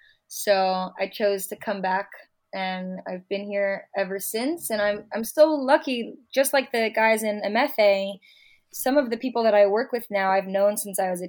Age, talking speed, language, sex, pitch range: 20-39, 200 wpm, English, female, 195-225 Hz